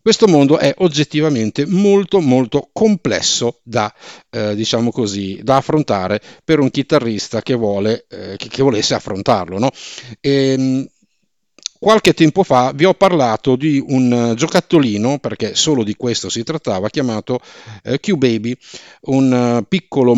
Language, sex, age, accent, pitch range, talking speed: Italian, male, 50-69, native, 105-155 Hz, 130 wpm